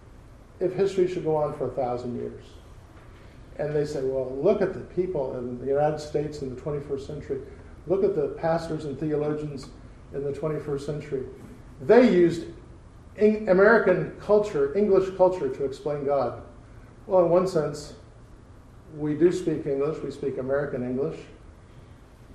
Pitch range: 130-160 Hz